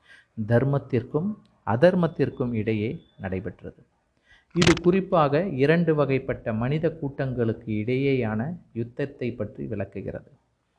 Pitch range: 115-145 Hz